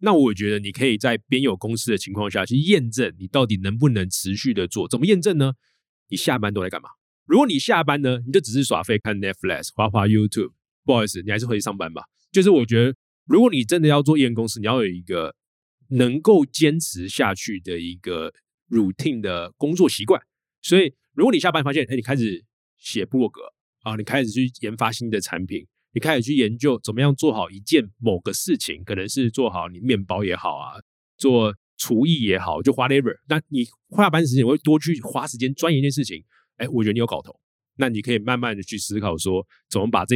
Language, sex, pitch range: Chinese, male, 105-140 Hz